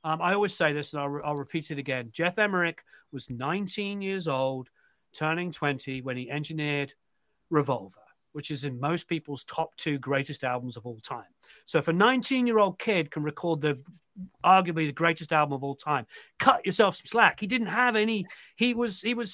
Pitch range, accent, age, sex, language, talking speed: 150-210 Hz, British, 40-59, male, English, 200 wpm